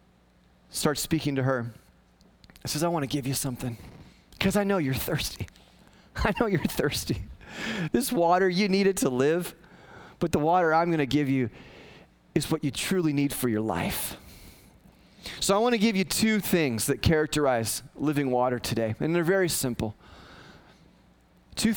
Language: English